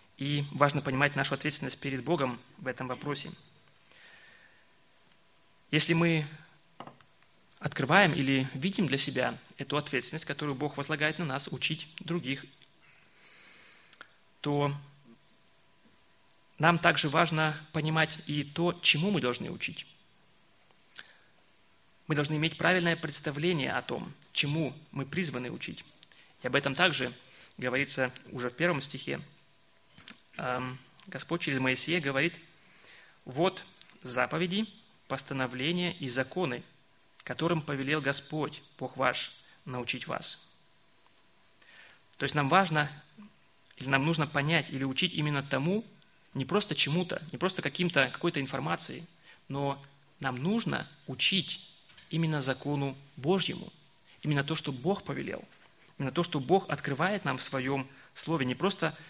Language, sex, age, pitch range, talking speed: Russian, male, 20-39, 135-170 Hz, 115 wpm